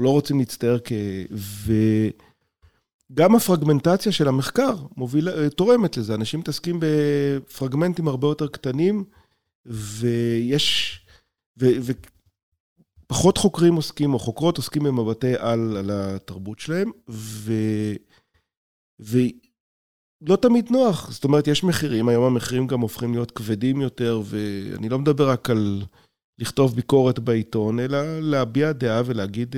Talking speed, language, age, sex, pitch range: 115 wpm, Hebrew, 40-59, male, 110-140 Hz